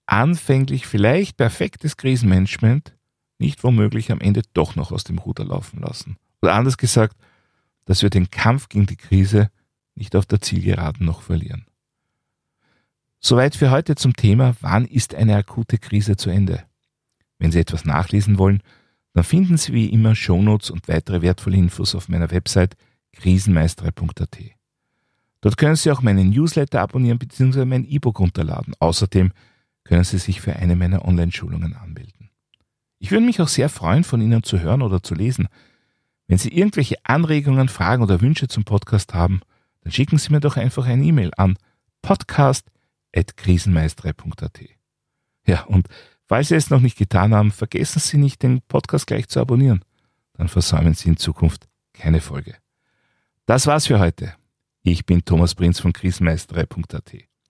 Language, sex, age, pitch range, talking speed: German, male, 40-59, 90-130 Hz, 155 wpm